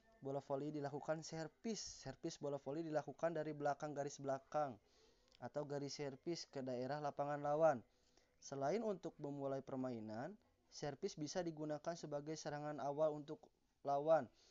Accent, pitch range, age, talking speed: native, 135-155 Hz, 20-39, 130 wpm